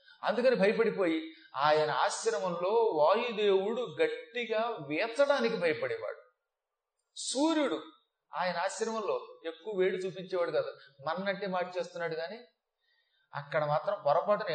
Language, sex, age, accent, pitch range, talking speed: Telugu, male, 30-49, native, 175-270 Hz, 85 wpm